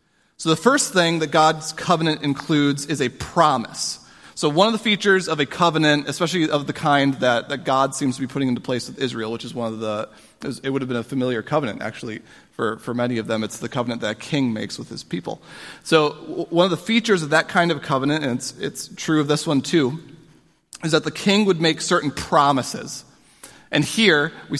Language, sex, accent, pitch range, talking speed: English, male, American, 135-165 Hz, 220 wpm